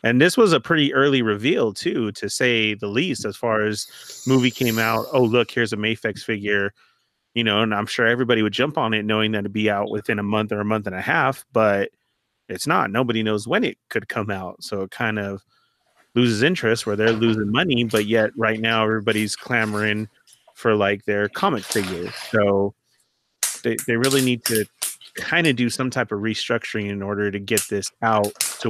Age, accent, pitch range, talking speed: 30-49, American, 105-120 Hz, 205 wpm